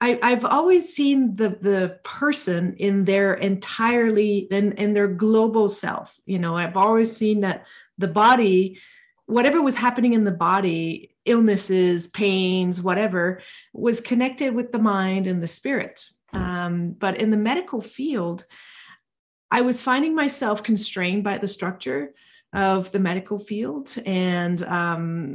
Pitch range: 185-230 Hz